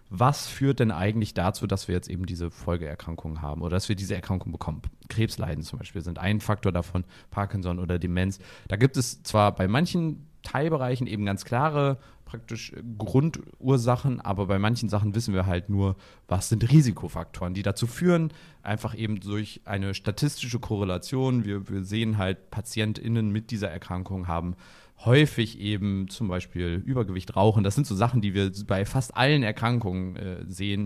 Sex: male